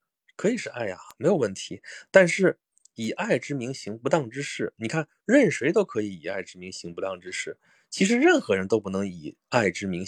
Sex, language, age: male, Chinese, 20-39